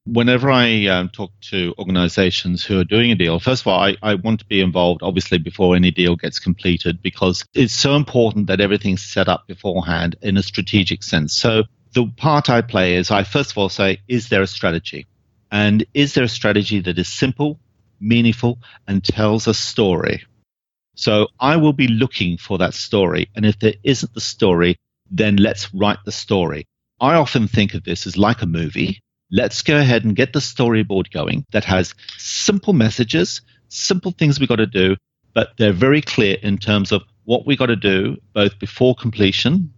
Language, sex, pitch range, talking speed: English, male, 95-130 Hz, 195 wpm